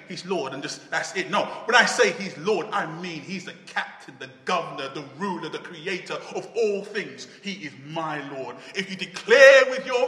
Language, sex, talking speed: English, male, 210 wpm